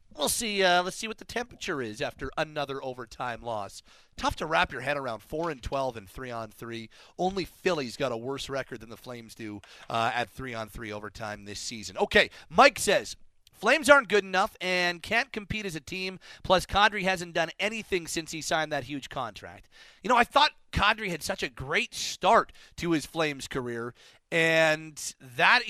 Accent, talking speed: American, 195 wpm